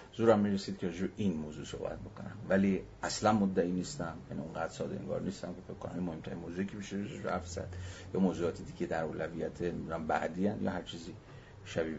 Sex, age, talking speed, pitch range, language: male, 50-69, 185 wpm, 85-105 Hz, Persian